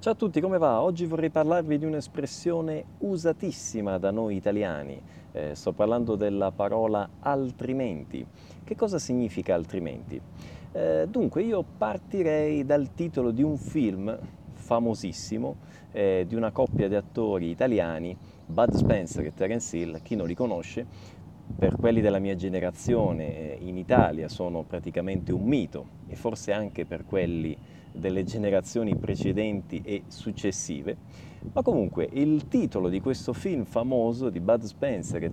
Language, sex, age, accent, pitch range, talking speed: Italian, male, 30-49, native, 90-130 Hz, 145 wpm